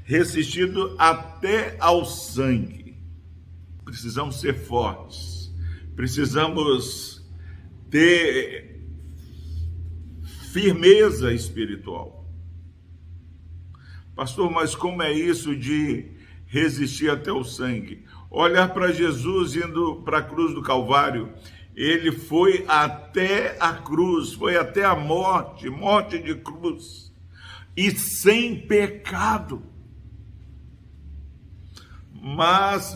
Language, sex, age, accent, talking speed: Portuguese, male, 50-69, Brazilian, 85 wpm